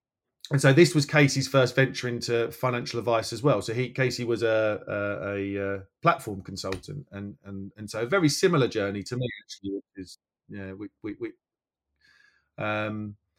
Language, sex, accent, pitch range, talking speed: English, male, British, 115-135 Hz, 170 wpm